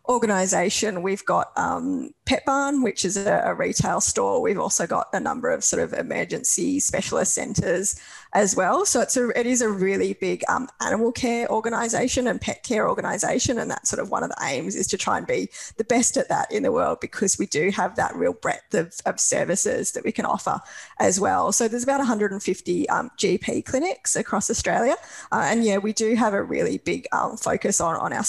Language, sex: English, female